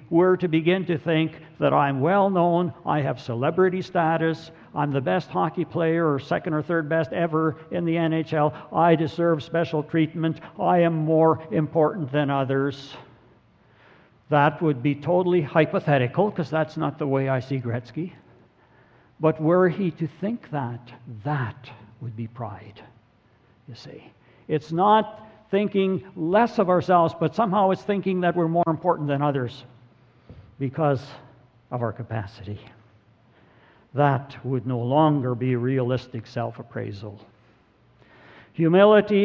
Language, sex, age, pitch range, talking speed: English, male, 60-79, 130-165 Hz, 135 wpm